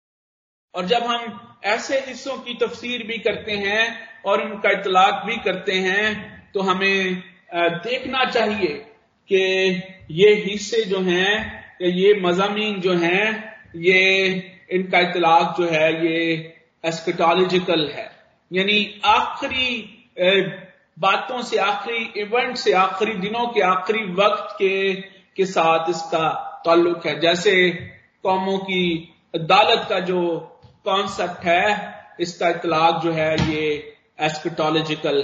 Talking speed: 120 wpm